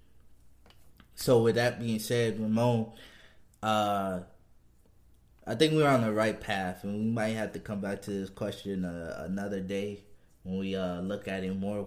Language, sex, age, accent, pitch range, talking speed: English, male, 20-39, American, 95-110 Hz, 170 wpm